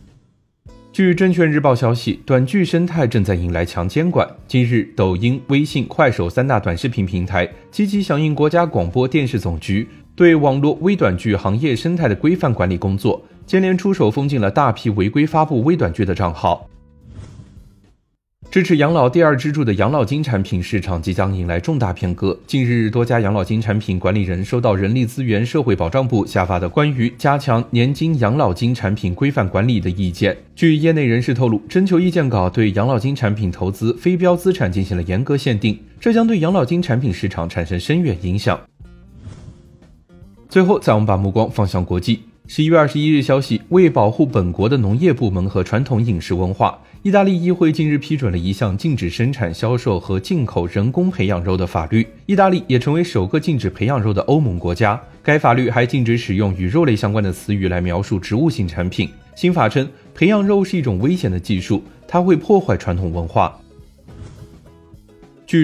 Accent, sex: native, male